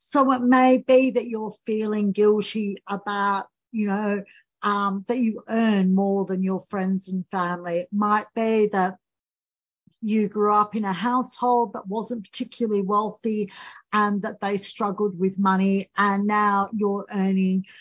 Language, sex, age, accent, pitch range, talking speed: English, female, 50-69, Australian, 190-225 Hz, 150 wpm